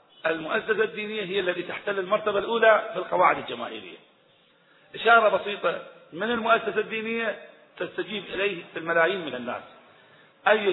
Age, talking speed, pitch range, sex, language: 40-59, 125 wpm, 165-220 Hz, male, Arabic